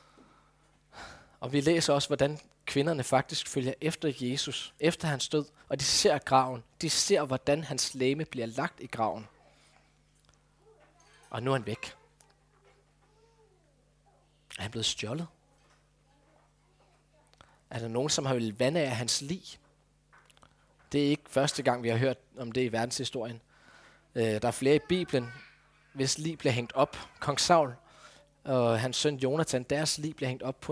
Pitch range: 120-150 Hz